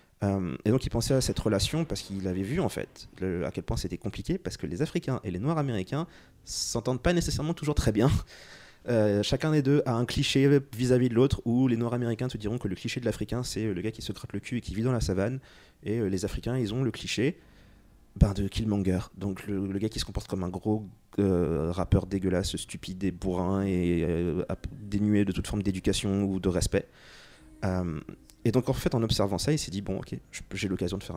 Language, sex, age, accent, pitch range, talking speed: French, male, 30-49, French, 90-120 Hz, 235 wpm